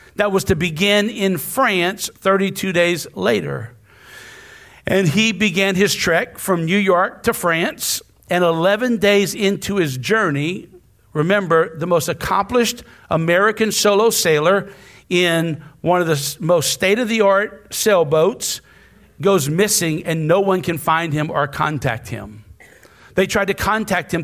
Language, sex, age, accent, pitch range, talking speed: English, male, 50-69, American, 165-205 Hz, 145 wpm